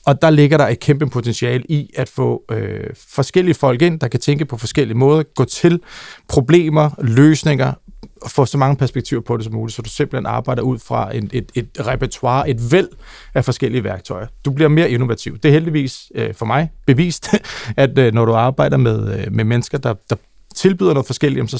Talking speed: 205 wpm